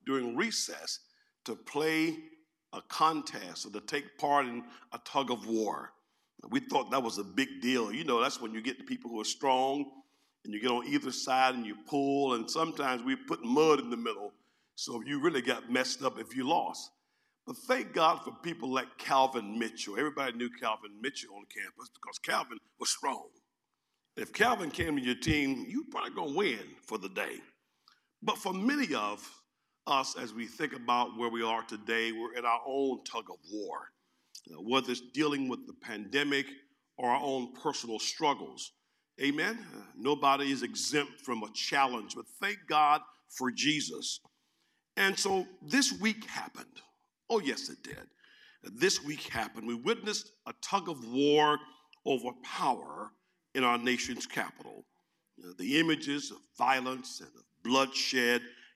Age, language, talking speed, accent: 50-69, English, 165 wpm, American